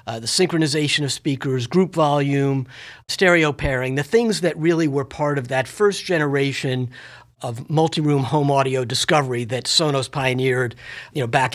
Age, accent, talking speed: 50-69, American, 155 wpm